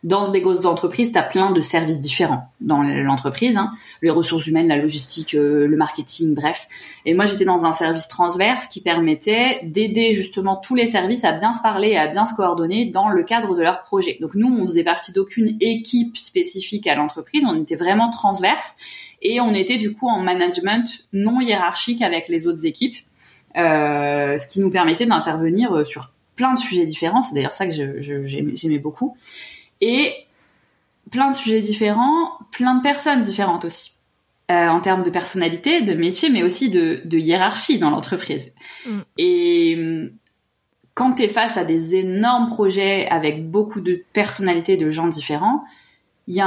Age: 20-39